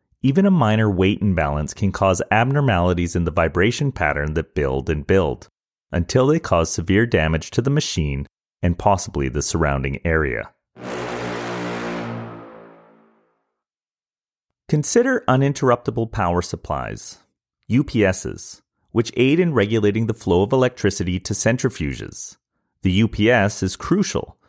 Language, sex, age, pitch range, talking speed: English, male, 30-49, 85-125 Hz, 120 wpm